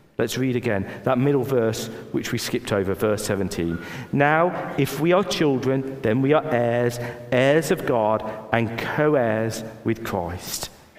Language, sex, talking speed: English, male, 155 wpm